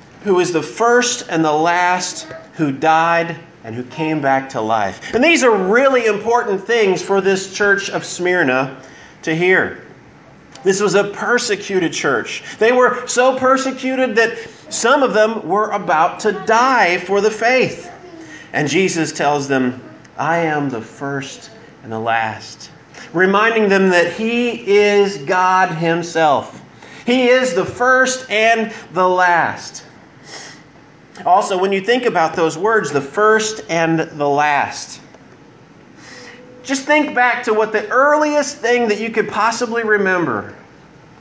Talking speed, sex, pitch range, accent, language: 145 wpm, male, 150-230 Hz, American, English